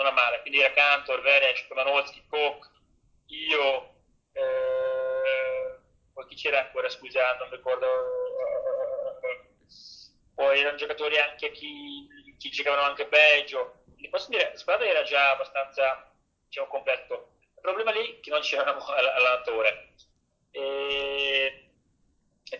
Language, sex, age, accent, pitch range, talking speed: Italian, male, 30-49, native, 135-180 Hz, 125 wpm